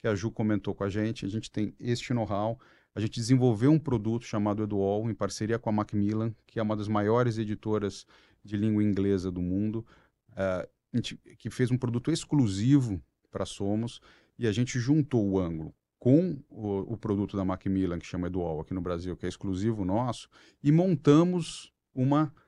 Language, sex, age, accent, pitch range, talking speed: Portuguese, male, 40-59, Brazilian, 105-130 Hz, 180 wpm